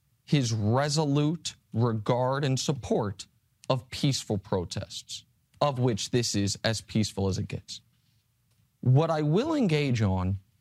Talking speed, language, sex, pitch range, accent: 125 wpm, English, male, 115-150 Hz, American